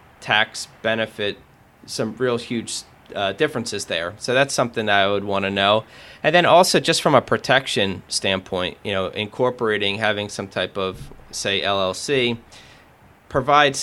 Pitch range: 100-115 Hz